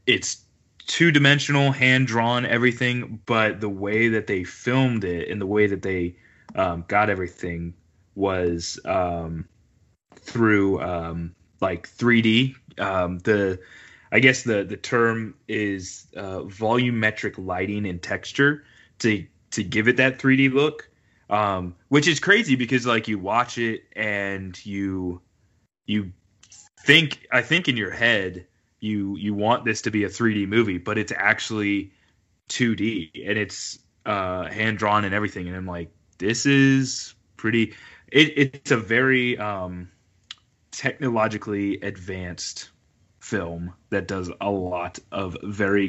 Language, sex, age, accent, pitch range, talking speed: English, male, 20-39, American, 95-120 Hz, 135 wpm